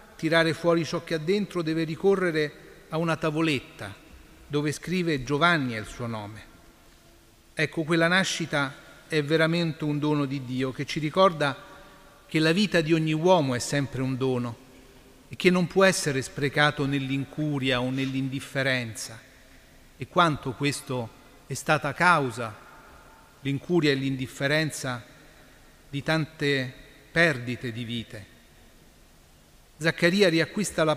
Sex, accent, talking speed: male, native, 130 wpm